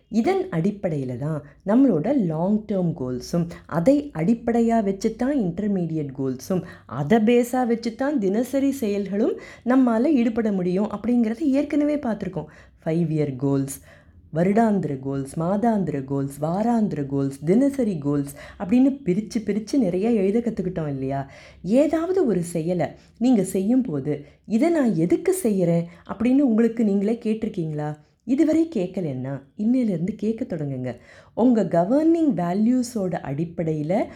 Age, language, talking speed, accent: 20-39, Tamil, 115 wpm, native